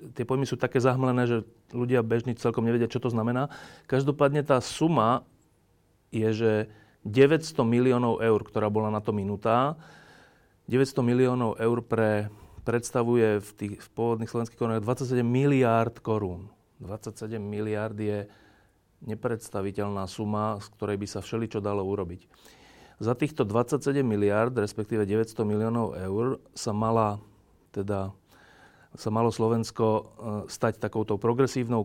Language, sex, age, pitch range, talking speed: Slovak, male, 30-49, 105-120 Hz, 130 wpm